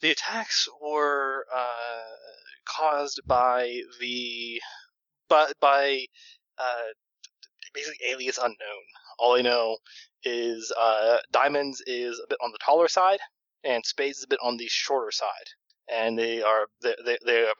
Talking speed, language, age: 140 wpm, English, 20-39